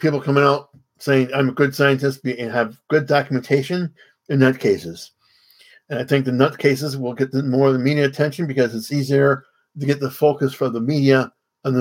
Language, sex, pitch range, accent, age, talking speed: English, male, 125-145 Hz, American, 50-69, 215 wpm